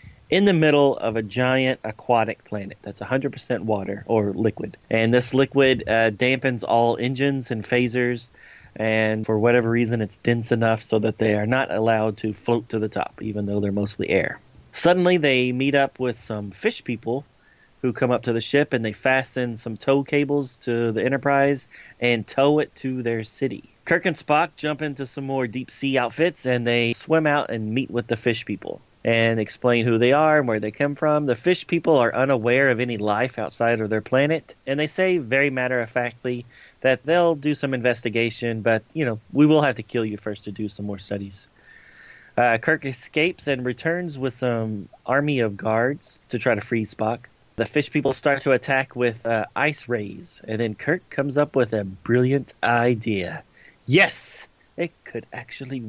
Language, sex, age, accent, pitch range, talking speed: English, male, 30-49, American, 110-140 Hz, 190 wpm